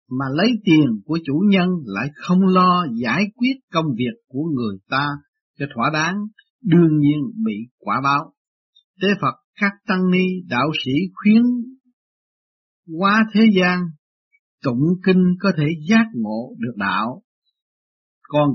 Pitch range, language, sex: 145-215 Hz, Vietnamese, male